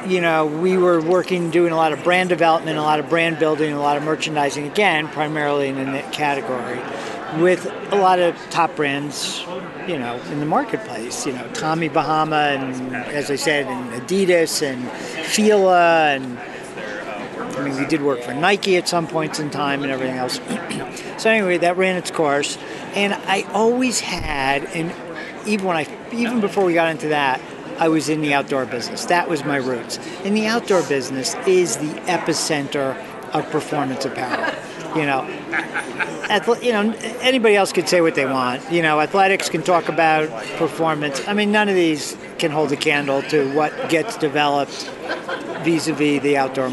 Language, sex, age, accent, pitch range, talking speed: English, male, 50-69, American, 140-180 Hz, 175 wpm